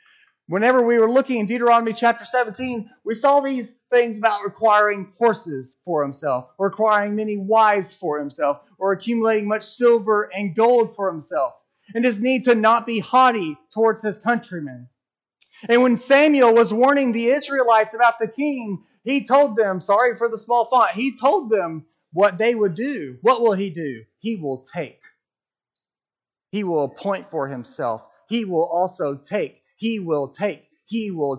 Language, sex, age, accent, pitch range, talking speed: English, male, 30-49, American, 160-240 Hz, 165 wpm